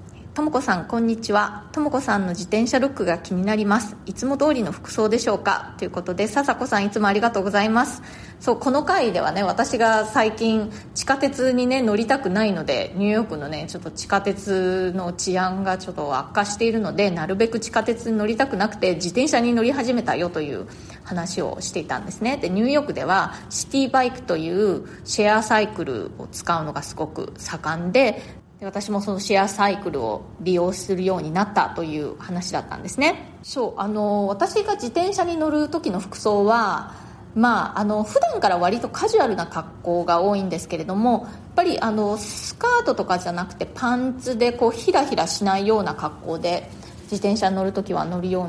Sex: female